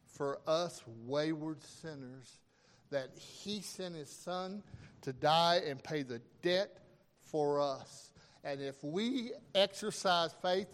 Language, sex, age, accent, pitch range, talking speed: English, male, 60-79, American, 145-205 Hz, 125 wpm